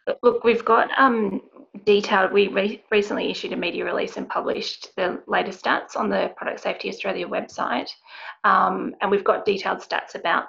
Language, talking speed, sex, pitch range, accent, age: English, 170 wpm, female, 200-240 Hz, Australian, 30-49